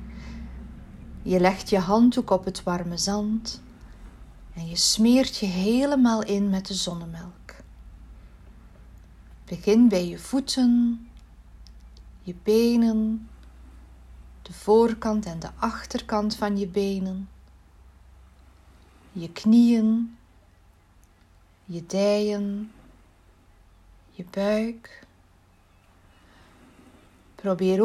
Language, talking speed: Dutch, 80 wpm